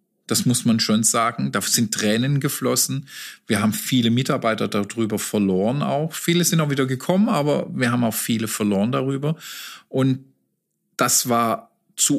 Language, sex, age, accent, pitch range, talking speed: German, male, 40-59, German, 115-175 Hz, 160 wpm